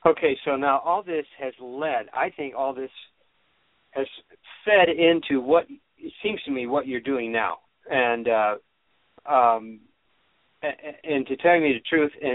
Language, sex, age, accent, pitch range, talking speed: English, male, 50-69, American, 125-165 Hz, 155 wpm